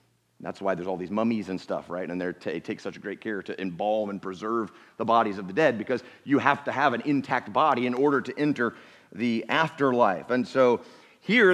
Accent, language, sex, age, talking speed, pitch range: American, English, male, 40-59, 220 wpm, 115-155 Hz